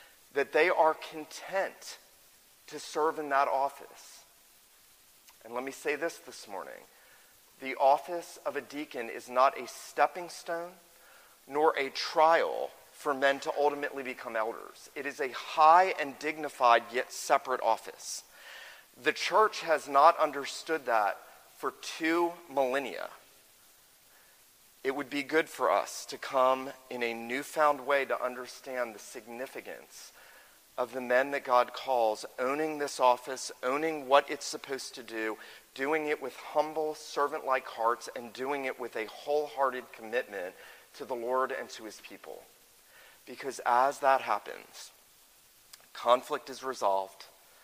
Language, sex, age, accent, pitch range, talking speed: English, male, 40-59, American, 125-150 Hz, 140 wpm